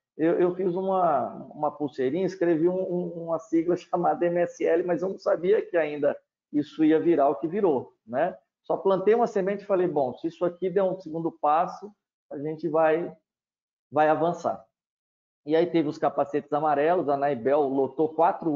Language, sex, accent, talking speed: Portuguese, male, Brazilian, 180 wpm